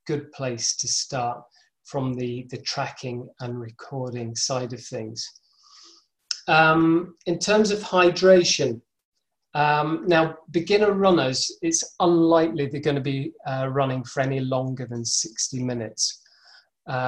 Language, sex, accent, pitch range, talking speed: English, male, British, 130-160 Hz, 130 wpm